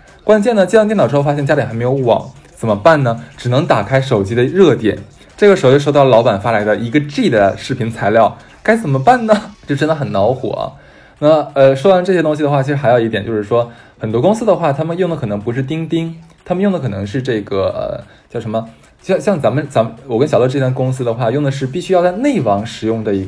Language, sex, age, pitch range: Chinese, male, 20-39, 110-155 Hz